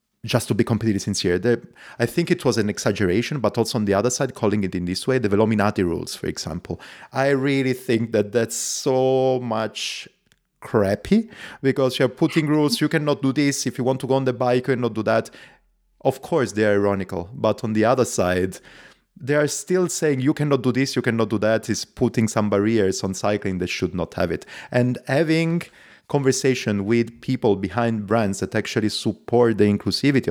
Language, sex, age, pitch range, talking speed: English, male, 30-49, 100-130 Hz, 200 wpm